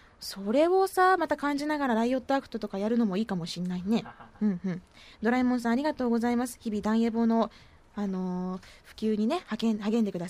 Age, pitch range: 20-39, 205-310 Hz